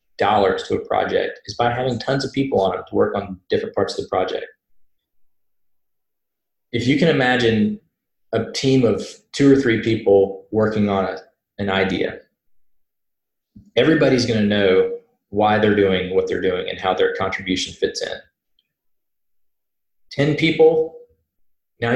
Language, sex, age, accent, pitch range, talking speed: English, male, 20-39, American, 95-135 Hz, 150 wpm